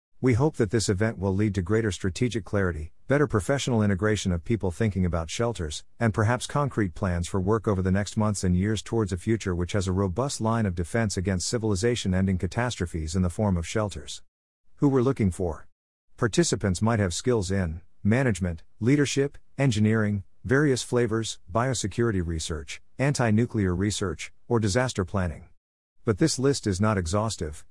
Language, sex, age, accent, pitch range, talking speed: English, male, 50-69, American, 90-115 Hz, 165 wpm